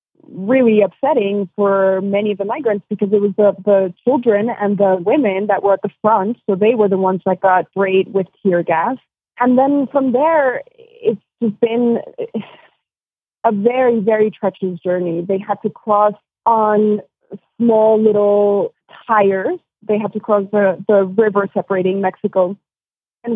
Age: 20-39